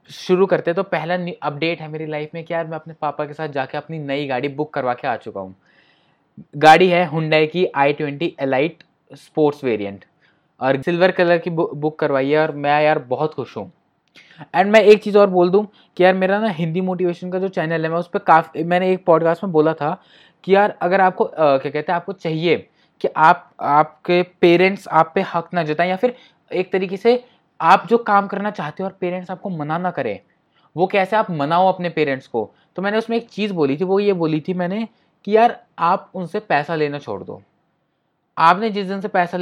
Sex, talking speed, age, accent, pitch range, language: male, 215 wpm, 20-39, native, 155-190 Hz, Hindi